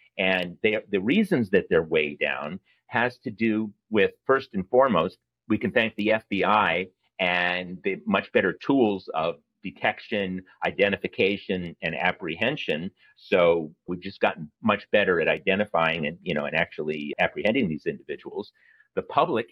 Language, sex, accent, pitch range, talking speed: English, male, American, 90-110 Hz, 150 wpm